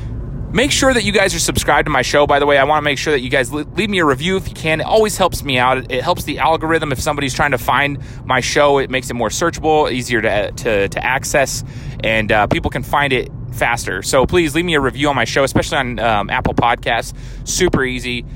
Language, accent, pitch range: English, American, 120-145 Hz